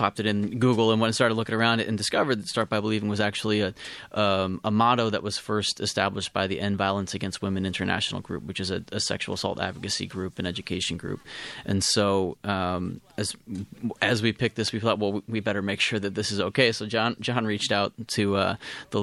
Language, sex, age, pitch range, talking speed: English, male, 30-49, 95-110 Hz, 230 wpm